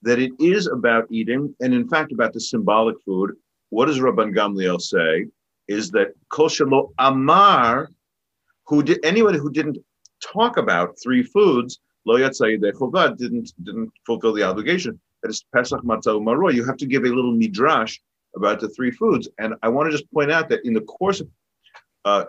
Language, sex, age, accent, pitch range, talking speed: English, male, 50-69, American, 115-170 Hz, 175 wpm